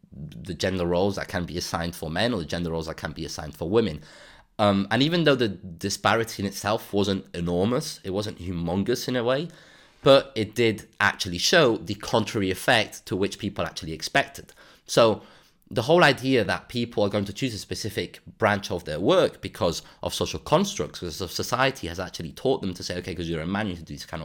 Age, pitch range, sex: 30-49, 90-120 Hz, male